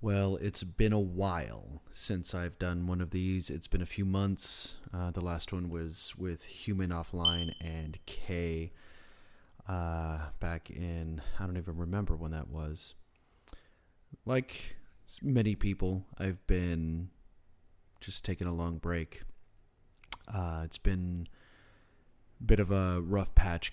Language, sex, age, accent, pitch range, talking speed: English, male, 30-49, American, 80-100 Hz, 140 wpm